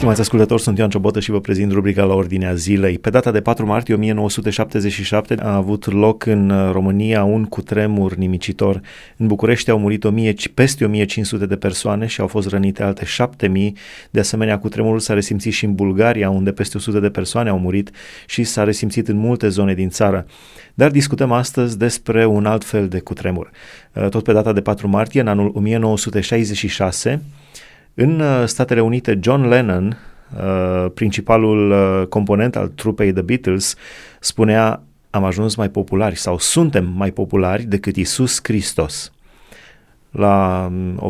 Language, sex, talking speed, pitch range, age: Romanian, male, 155 wpm, 95-115 Hz, 30-49